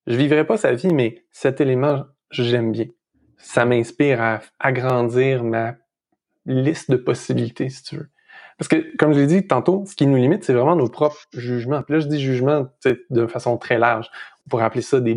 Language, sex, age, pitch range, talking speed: French, male, 20-39, 120-155 Hz, 200 wpm